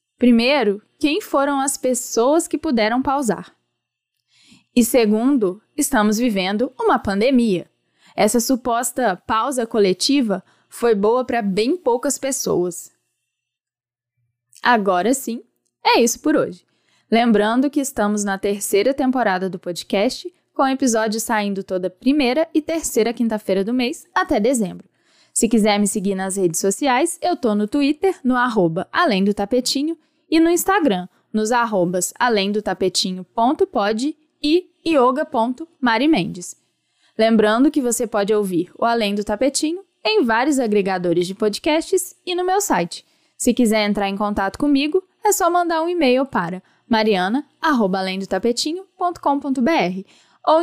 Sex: female